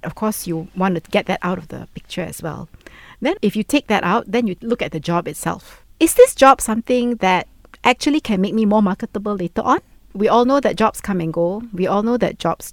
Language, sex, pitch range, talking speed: English, female, 170-225 Hz, 245 wpm